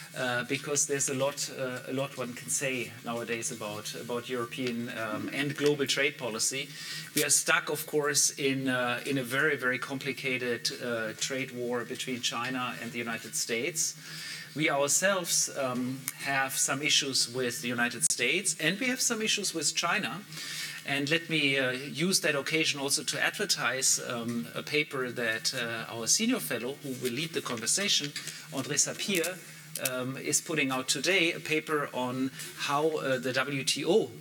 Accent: German